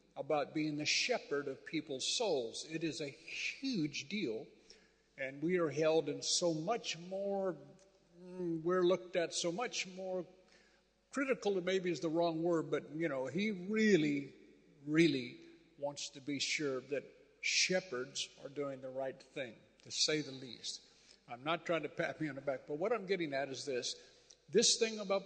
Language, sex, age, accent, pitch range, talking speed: English, male, 50-69, American, 150-185 Hz, 170 wpm